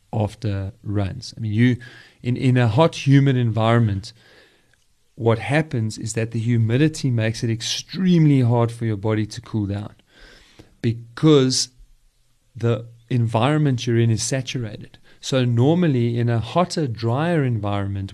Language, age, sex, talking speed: English, 40-59, male, 140 wpm